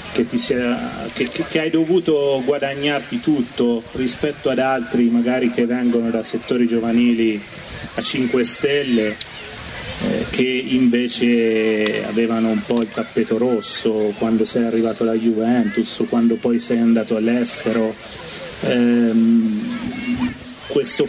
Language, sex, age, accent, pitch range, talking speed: Italian, male, 30-49, native, 115-140 Hz, 120 wpm